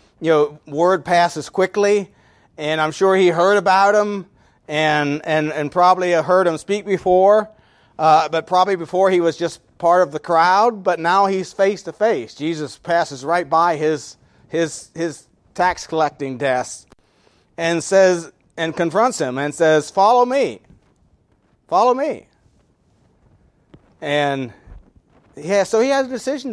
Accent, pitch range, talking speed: American, 145-195 Hz, 145 wpm